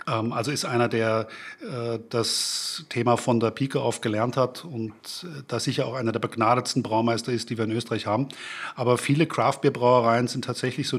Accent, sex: German, male